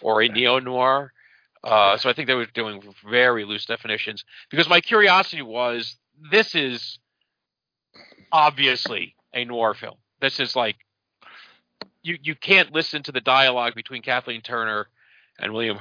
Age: 50-69